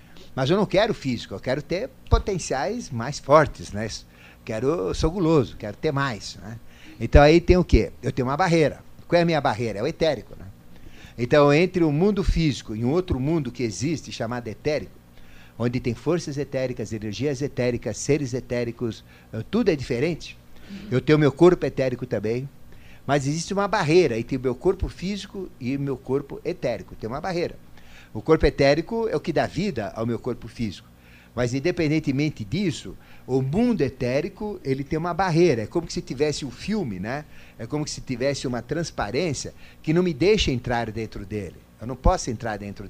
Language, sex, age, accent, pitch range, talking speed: Portuguese, male, 50-69, Brazilian, 110-160 Hz, 180 wpm